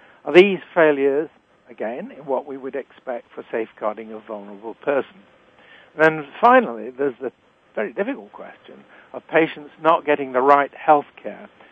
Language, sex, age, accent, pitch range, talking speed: English, male, 60-79, British, 125-165 Hz, 150 wpm